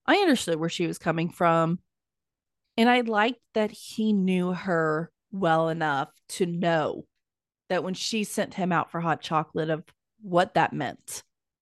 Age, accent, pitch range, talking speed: 30-49, American, 165-215 Hz, 160 wpm